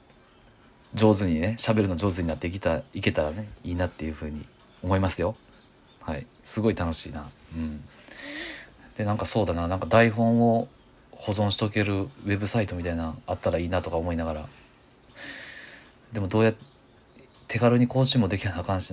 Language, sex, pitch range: Japanese, male, 85-110 Hz